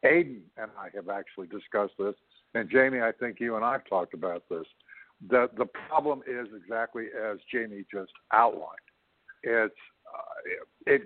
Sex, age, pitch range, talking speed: male, 60-79, 105-120 Hz, 165 wpm